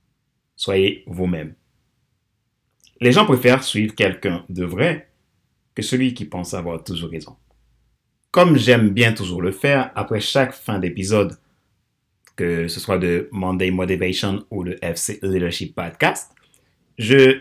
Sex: male